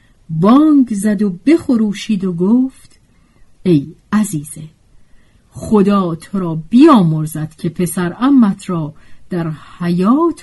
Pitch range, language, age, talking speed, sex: 160-220 Hz, Persian, 50-69, 90 wpm, female